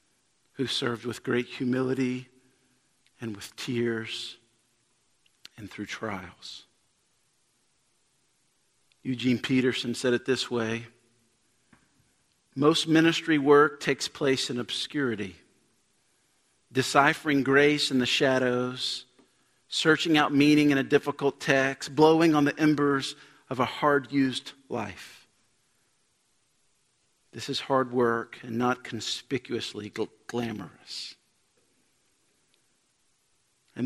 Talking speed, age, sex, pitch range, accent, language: 95 wpm, 50-69, male, 115-140 Hz, American, English